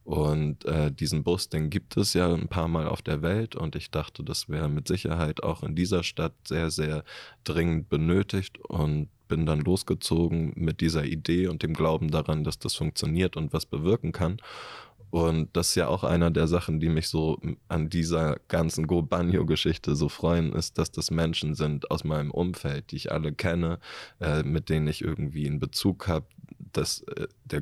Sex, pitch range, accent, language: male, 75-85 Hz, German, German